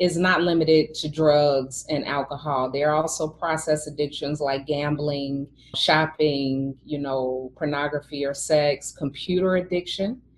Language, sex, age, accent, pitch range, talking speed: English, female, 30-49, American, 150-195 Hz, 125 wpm